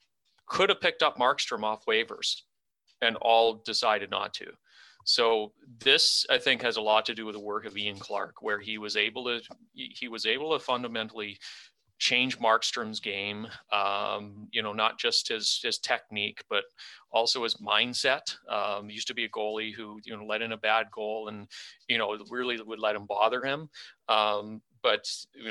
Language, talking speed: English, 185 wpm